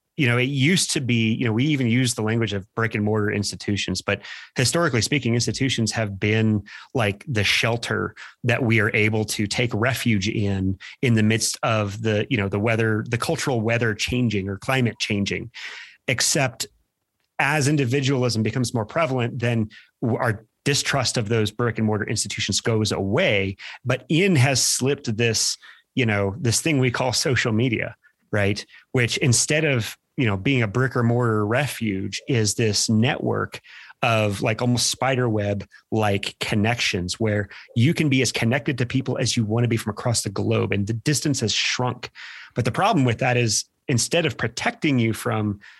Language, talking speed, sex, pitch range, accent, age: English, 175 wpm, male, 110-130 Hz, American, 30-49